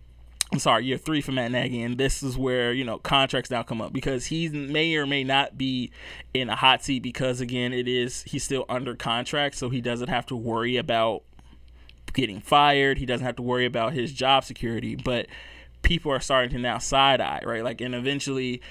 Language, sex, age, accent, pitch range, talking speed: English, male, 20-39, American, 120-135 Hz, 210 wpm